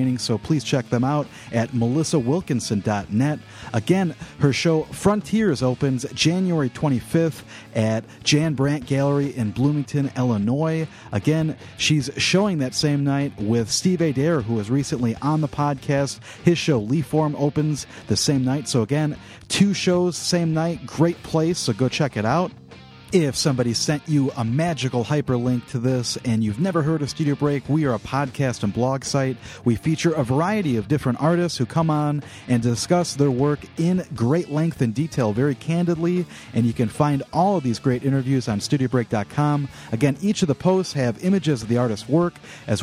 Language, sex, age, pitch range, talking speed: English, male, 40-59, 120-155 Hz, 170 wpm